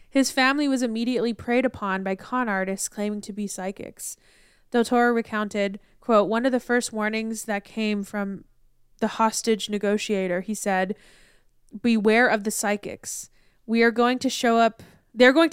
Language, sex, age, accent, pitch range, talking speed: English, female, 20-39, American, 205-240 Hz, 160 wpm